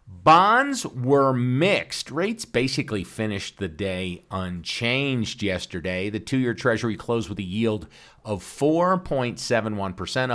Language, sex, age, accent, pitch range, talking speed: English, male, 50-69, American, 95-150 Hz, 115 wpm